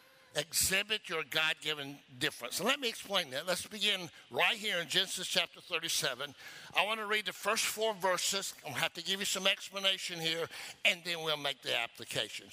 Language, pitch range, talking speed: English, 155-195 Hz, 190 wpm